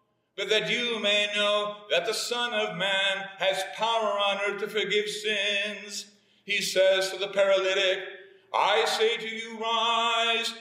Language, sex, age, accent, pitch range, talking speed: English, male, 50-69, American, 200-220 Hz, 145 wpm